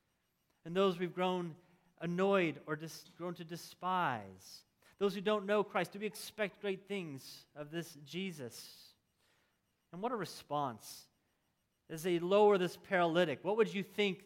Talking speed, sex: 150 wpm, male